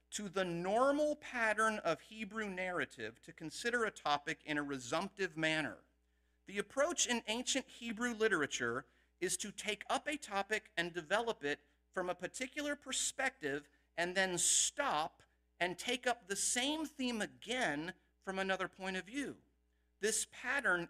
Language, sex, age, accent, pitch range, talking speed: English, male, 50-69, American, 145-215 Hz, 145 wpm